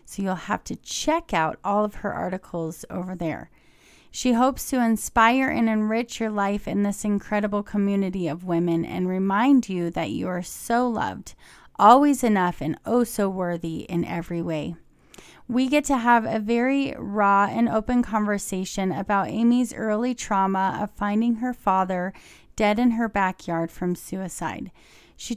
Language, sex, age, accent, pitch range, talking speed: English, female, 30-49, American, 185-230 Hz, 160 wpm